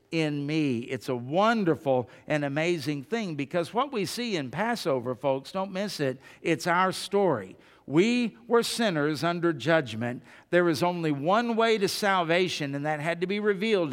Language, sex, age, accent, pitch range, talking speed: English, male, 50-69, American, 135-195 Hz, 170 wpm